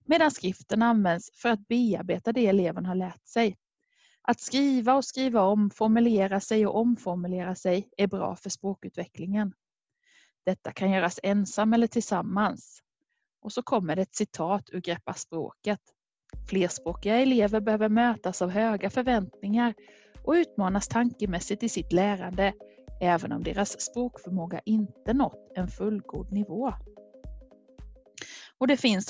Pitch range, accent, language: 185-235 Hz, native, Swedish